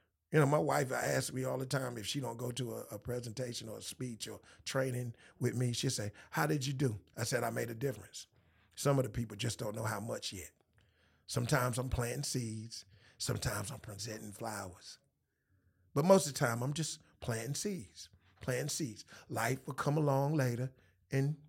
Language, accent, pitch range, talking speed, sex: English, American, 105-145 Hz, 200 wpm, male